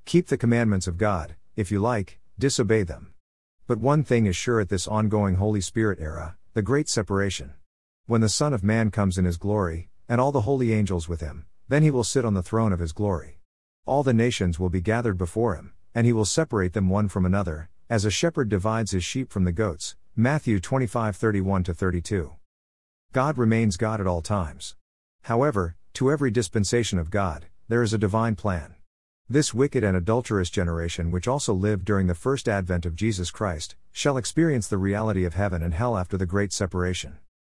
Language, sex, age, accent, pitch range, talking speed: English, male, 50-69, American, 90-115 Hz, 195 wpm